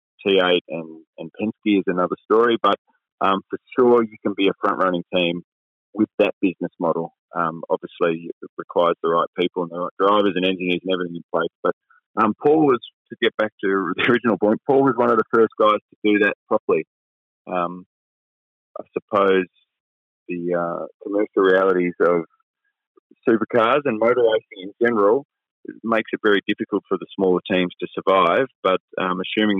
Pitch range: 90-110 Hz